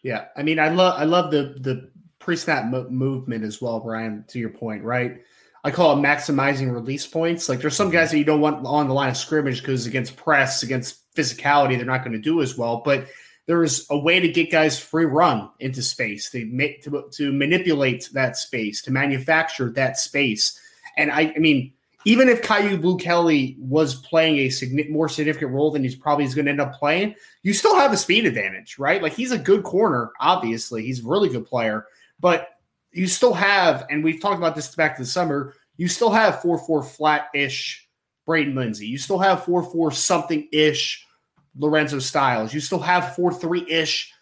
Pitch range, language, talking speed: 130-170 Hz, English, 195 wpm